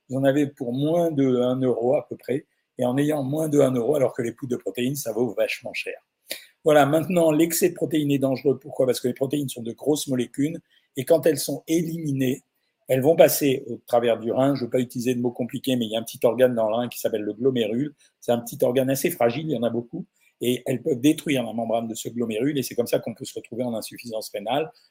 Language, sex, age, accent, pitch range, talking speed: French, male, 50-69, French, 125-150 Hz, 265 wpm